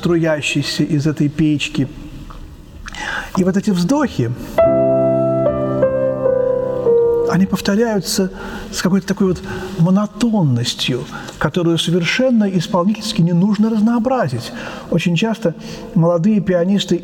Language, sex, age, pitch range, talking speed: Russian, male, 40-59, 145-195 Hz, 90 wpm